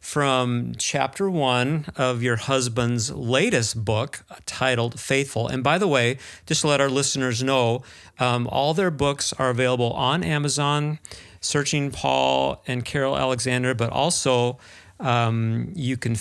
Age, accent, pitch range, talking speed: 50-69, American, 115-135 Hz, 140 wpm